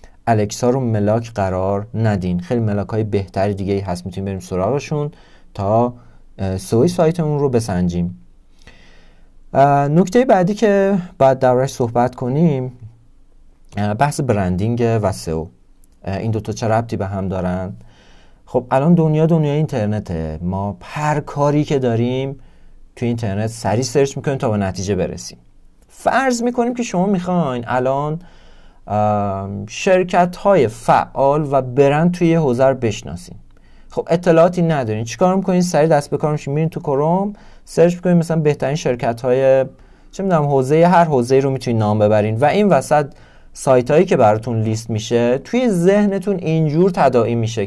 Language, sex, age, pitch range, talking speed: Persian, male, 40-59, 105-160 Hz, 145 wpm